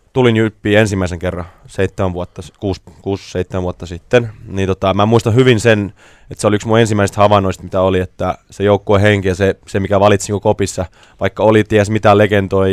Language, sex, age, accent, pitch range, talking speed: Finnish, male, 20-39, native, 95-105 Hz, 175 wpm